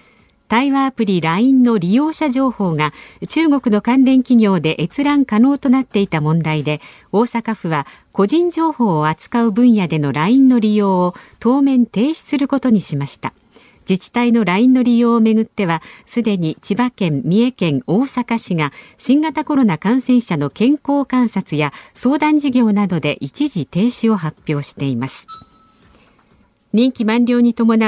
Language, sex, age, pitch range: Japanese, female, 50-69, 170-255 Hz